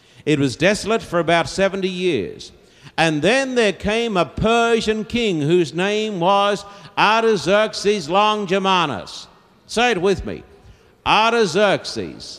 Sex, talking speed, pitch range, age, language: male, 115 wpm, 185-220 Hz, 60-79, English